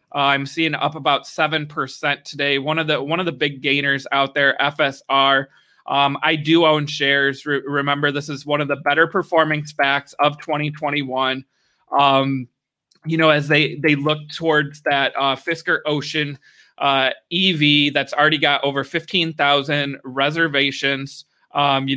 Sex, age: male, 20-39